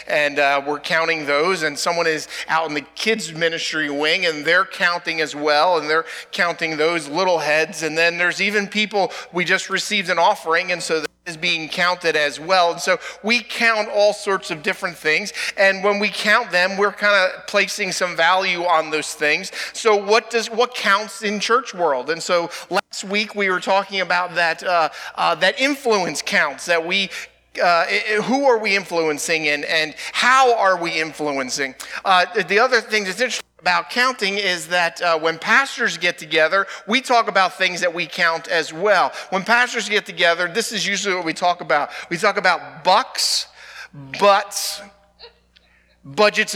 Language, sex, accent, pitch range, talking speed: English, male, American, 165-205 Hz, 185 wpm